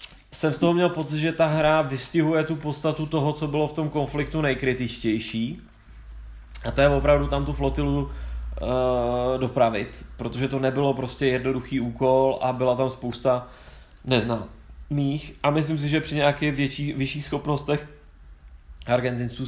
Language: Czech